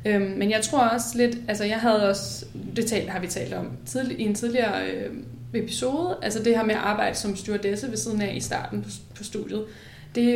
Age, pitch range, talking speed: 20-39, 190-220 Hz, 195 wpm